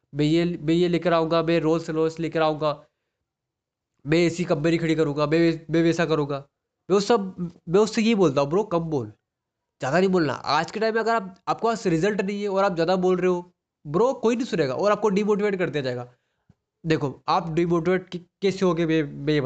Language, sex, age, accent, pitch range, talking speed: Hindi, male, 20-39, native, 150-185 Hz, 210 wpm